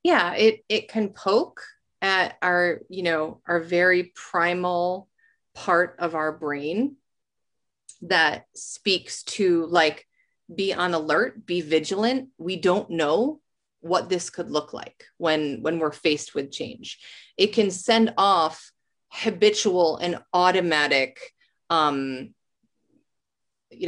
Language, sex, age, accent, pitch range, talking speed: English, female, 30-49, American, 160-210 Hz, 120 wpm